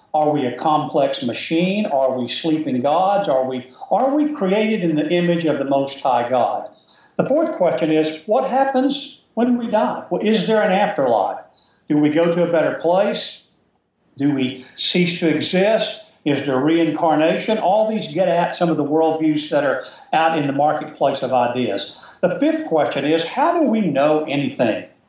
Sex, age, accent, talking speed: male, 50-69, American, 180 wpm